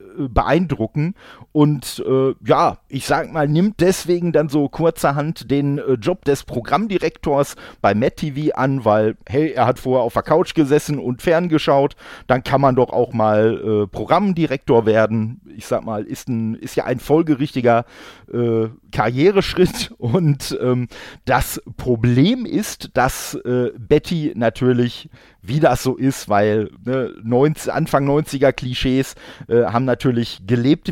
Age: 40-59